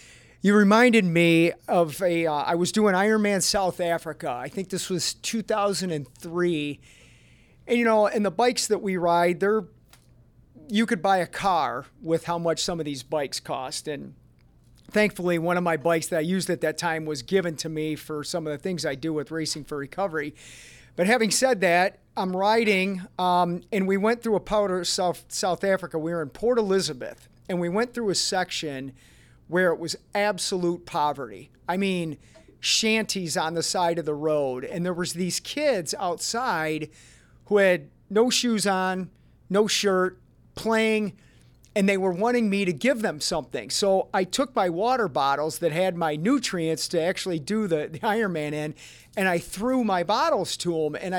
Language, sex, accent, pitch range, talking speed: English, male, American, 160-210 Hz, 185 wpm